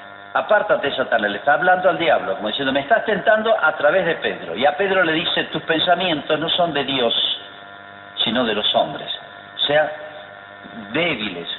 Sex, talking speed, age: male, 175 wpm, 50-69